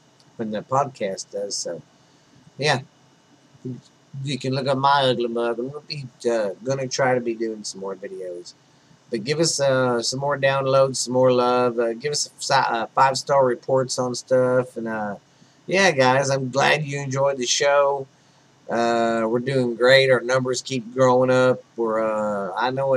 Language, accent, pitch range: English, American, 115-145 Hz